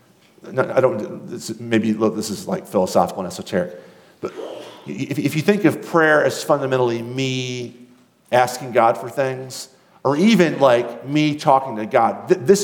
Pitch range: 125-180 Hz